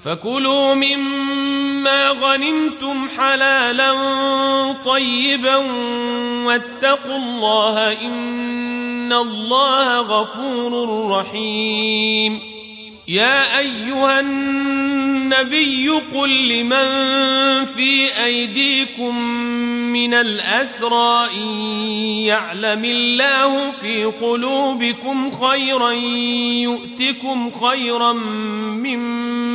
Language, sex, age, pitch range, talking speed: Arabic, male, 40-59, 215-270 Hz, 60 wpm